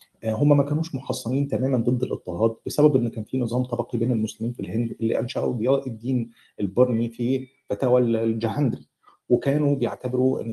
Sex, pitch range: male, 110-135 Hz